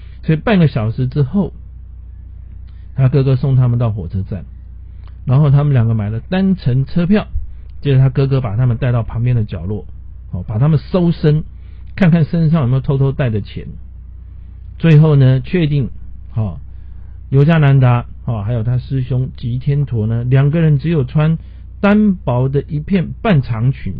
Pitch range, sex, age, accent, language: 90-140 Hz, male, 50-69, native, Chinese